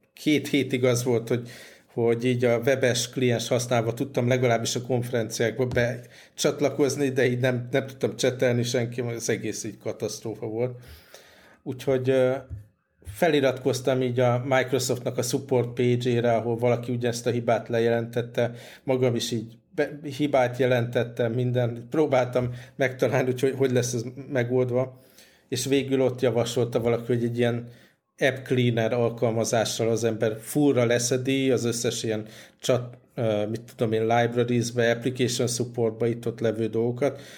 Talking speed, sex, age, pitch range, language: 140 wpm, male, 50-69, 115-130 Hz, Hungarian